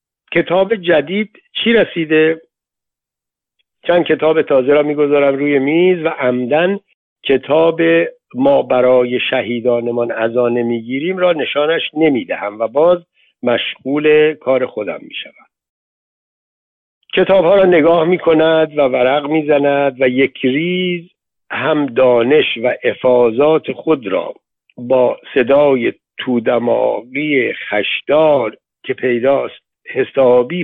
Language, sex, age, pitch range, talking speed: Persian, male, 60-79, 135-175 Hz, 100 wpm